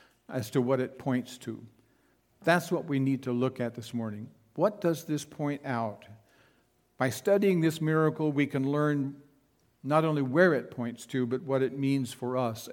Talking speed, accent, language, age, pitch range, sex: 185 wpm, American, English, 60-79, 125-155 Hz, male